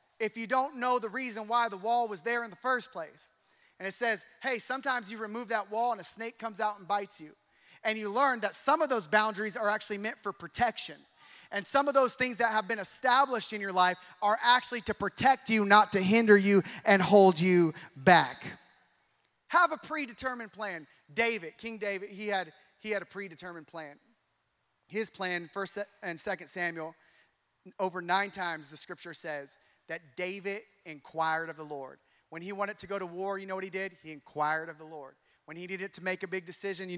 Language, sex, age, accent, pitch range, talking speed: English, male, 30-49, American, 175-220 Hz, 210 wpm